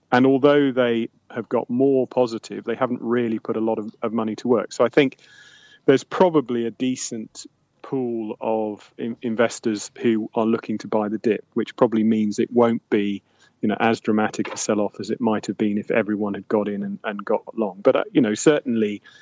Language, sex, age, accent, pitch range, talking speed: English, male, 30-49, British, 105-120 Hz, 210 wpm